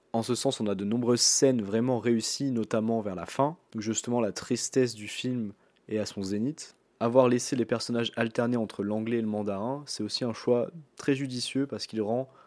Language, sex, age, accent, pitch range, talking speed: French, male, 20-39, French, 110-130 Hz, 205 wpm